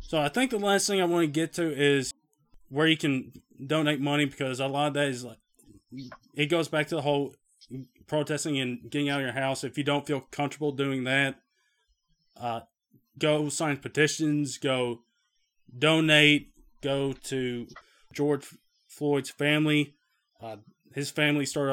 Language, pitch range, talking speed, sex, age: English, 135-150 Hz, 165 wpm, male, 20-39